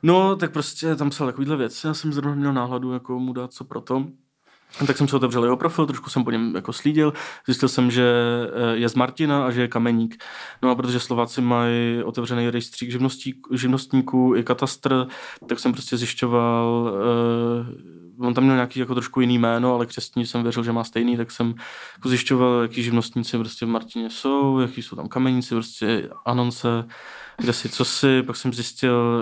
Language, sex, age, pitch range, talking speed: Czech, male, 20-39, 115-130 Hz, 185 wpm